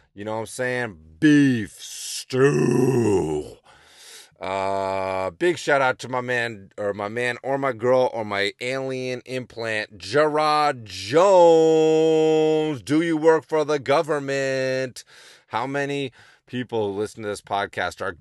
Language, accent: English, American